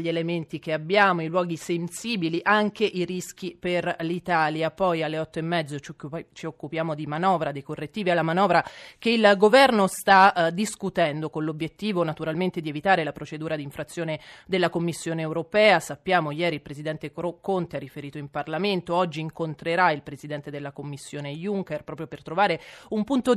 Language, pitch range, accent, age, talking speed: Italian, 155-190 Hz, native, 30-49, 165 wpm